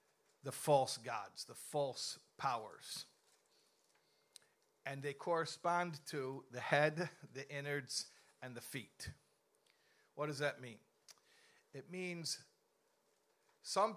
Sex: male